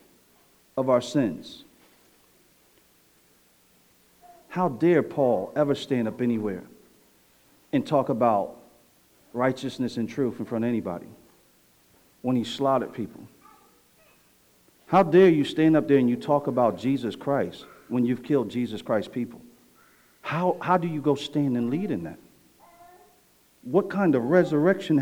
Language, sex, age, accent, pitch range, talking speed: English, male, 50-69, American, 130-180 Hz, 135 wpm